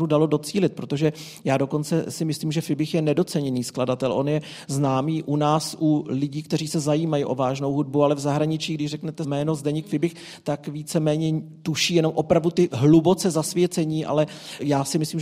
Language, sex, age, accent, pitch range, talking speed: Czech, male, 40-59, native, 145-165 Hz, 180 wpm